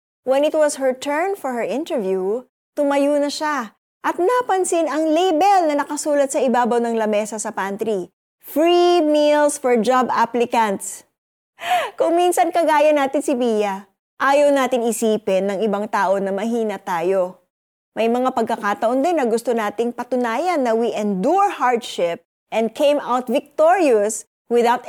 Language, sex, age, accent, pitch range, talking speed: Filipino, female, 20-39, native, 205-295 Hz, 145 wpm